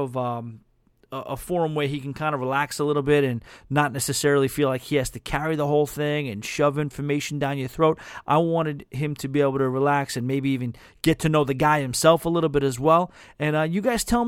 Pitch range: 125-150 Hz